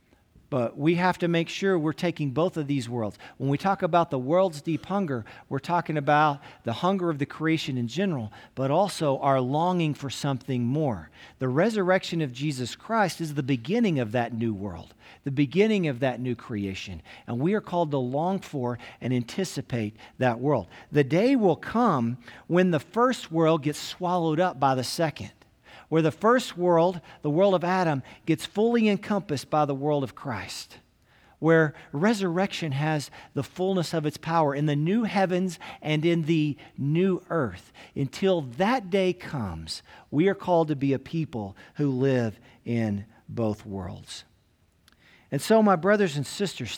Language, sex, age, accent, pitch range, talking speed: English, male, 50-69, American, 125-180 Hz, 175 wpm